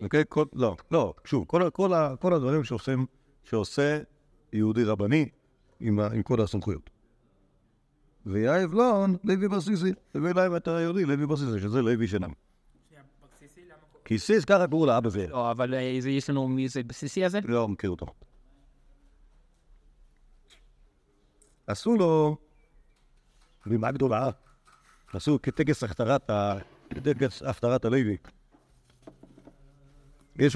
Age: 50-69